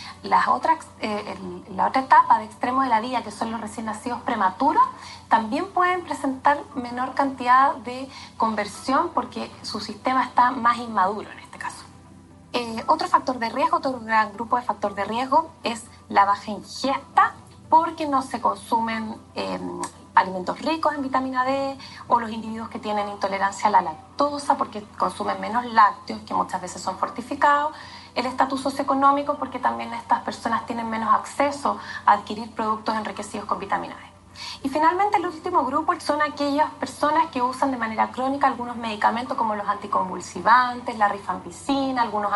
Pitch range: 215-285 Hz